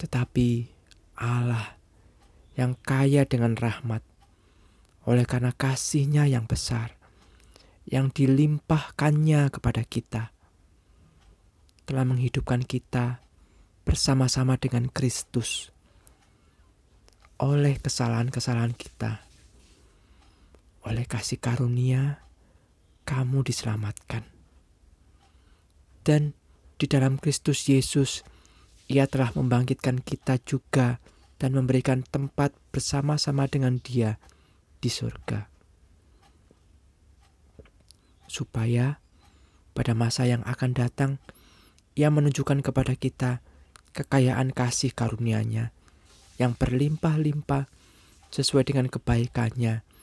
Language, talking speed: Indonesian, 80 wpm